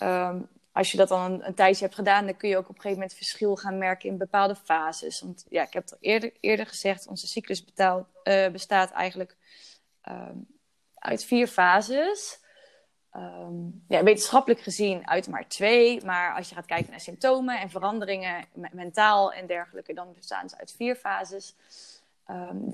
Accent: Dutch